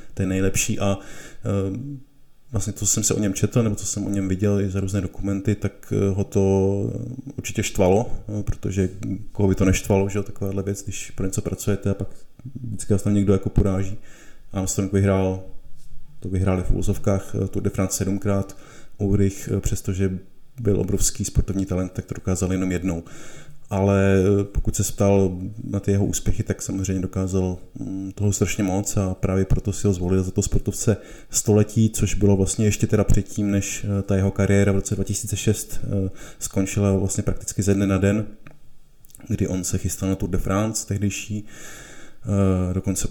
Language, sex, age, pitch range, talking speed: Czech, male, 20-39, 95-105 Hz, 175 wpm